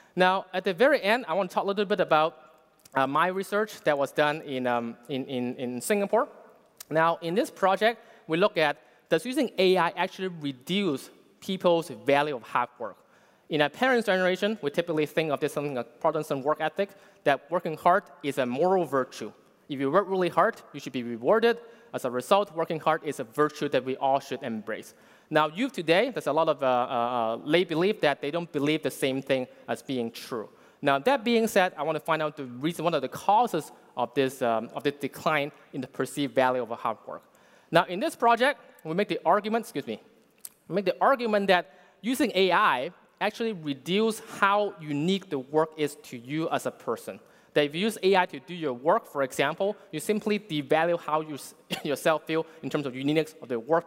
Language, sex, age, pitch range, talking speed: English, male, 20-39, 140-195 Hz, 210 wpm